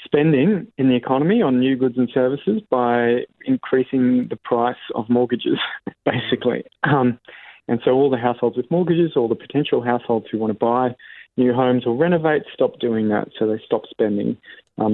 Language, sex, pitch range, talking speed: English, male, 110-125 Hz, 175 wpm